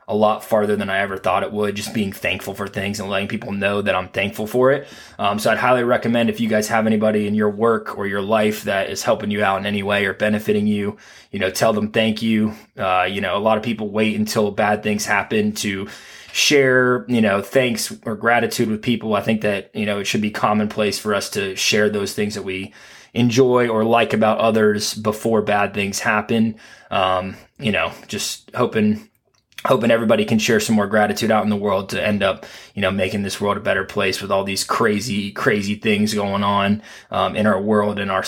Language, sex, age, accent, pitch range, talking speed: English, male, 20-39, American, 105-115 Hz, 225 wpm